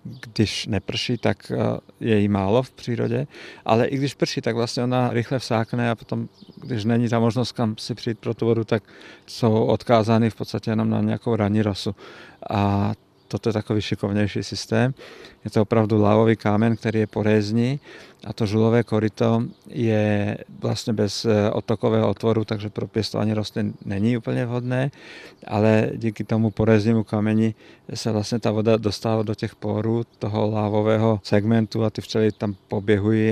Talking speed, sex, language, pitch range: 160 wpm, male, Czech, 105-115 Hz